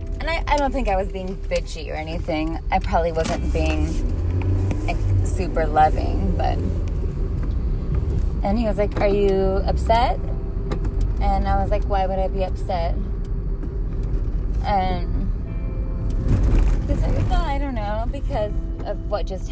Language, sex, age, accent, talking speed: English, female, 20-39, American, 130 wpm